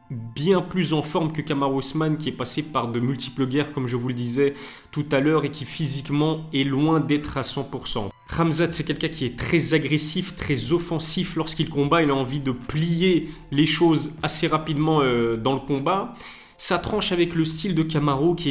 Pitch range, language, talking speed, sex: 135-160 Hz, French, 200 wpm, male